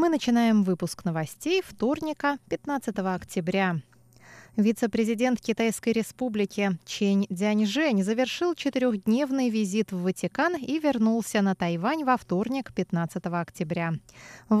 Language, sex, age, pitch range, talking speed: Russian, female, 20-39, 185-255 Hz, 105 wpm